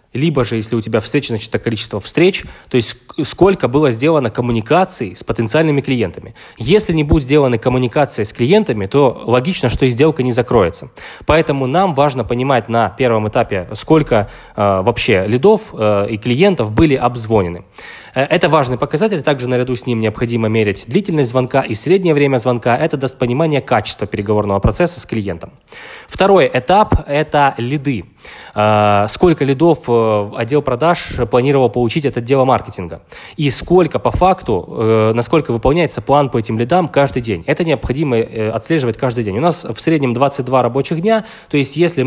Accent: native